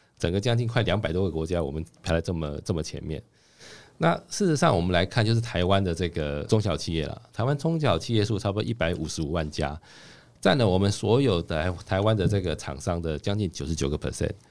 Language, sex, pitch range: Chinese, male, 85-120 Hz